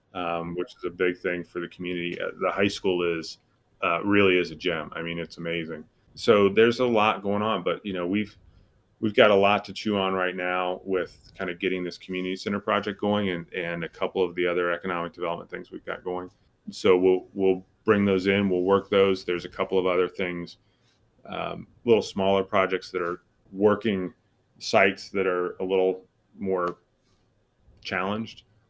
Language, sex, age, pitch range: English, male, 30-49, 90-105 Hz